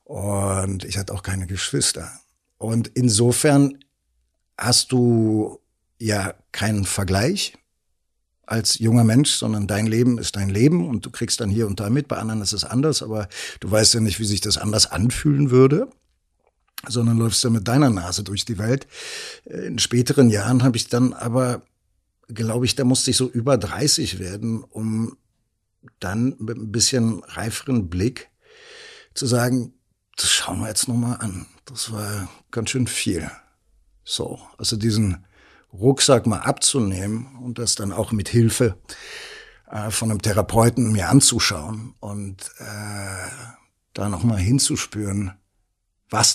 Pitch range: 100-120 Hz